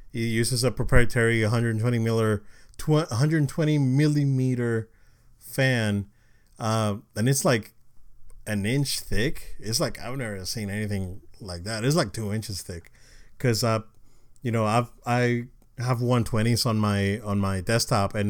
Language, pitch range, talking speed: English, 105-125 Hz, 165 wpm